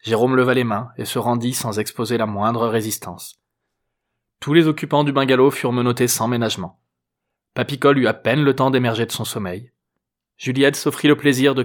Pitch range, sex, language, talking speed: 120-140 Hz, male, French, 185 wpm